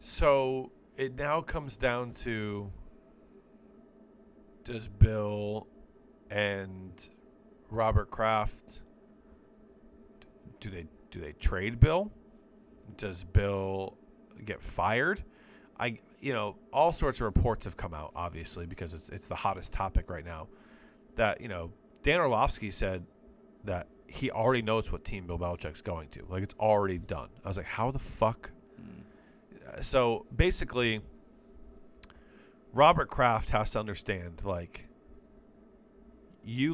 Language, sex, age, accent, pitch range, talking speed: English, male, 30-49, American, 90-125 Hz, 120 wpm